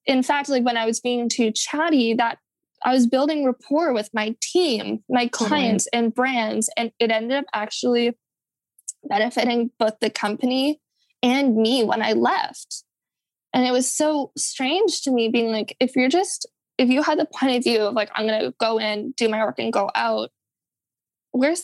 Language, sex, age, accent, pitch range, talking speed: English, female, 10-29, American, 230-285 Hz, 190 wpm